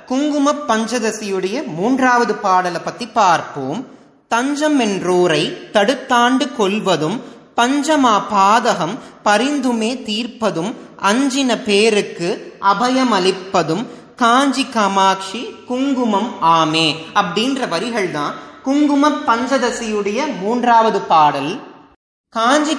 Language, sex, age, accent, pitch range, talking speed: Tamil, male, 30-49, native, 195-250 Hz, 50 wpm